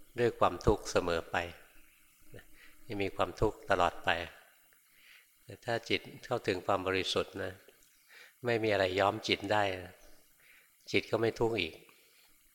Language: Thai